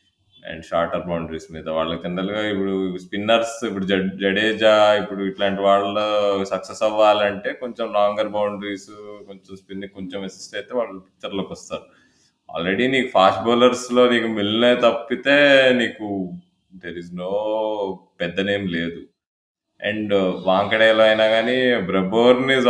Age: 20-39